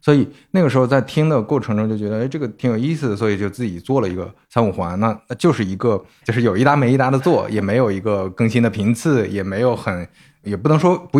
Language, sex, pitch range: Chinese, male, 100-135 Hz